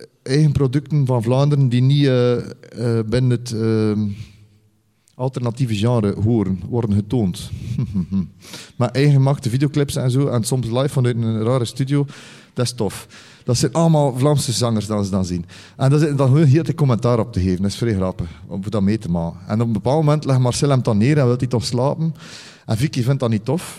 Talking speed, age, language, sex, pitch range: 210 wpm, 40-59, Dutch, male, 115-155 Hz